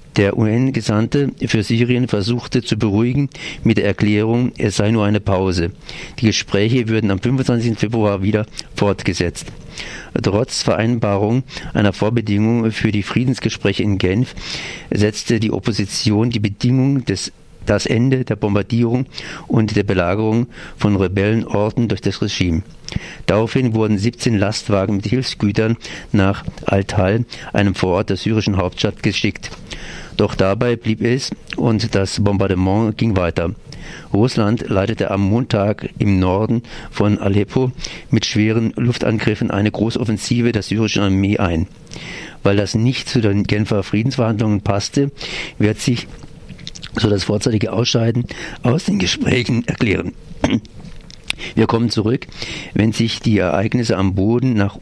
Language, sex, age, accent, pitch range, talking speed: German, male, 50-69, German, 100-120 Hz, 130 wpm